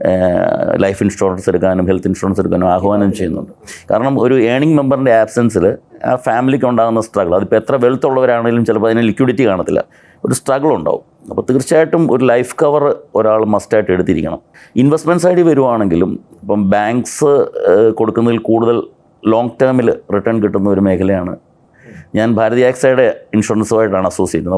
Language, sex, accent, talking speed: Malayalam, male, native, 130 wpm